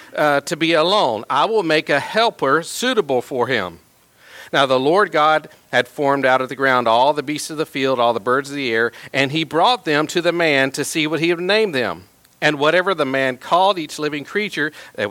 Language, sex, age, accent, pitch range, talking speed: English, male, 50-69, American, 135-185 Hz, 225 wpm